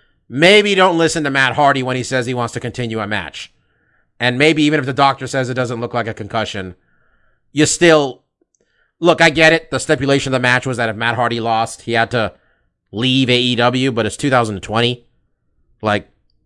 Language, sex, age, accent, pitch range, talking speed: English, male, 30-49, American, 105-135 Hz, 195 wpm